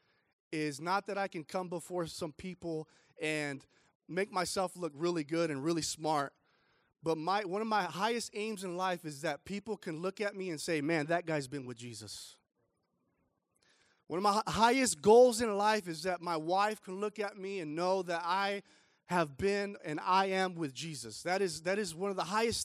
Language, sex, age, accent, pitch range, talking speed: English, male, 30-49, American, 165-210 Hz, 205 wpm